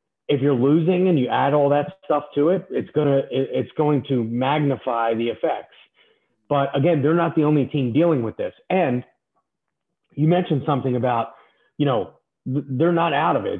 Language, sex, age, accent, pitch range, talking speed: English, male, 30-49, American, 125-160 Hz, 180 wpm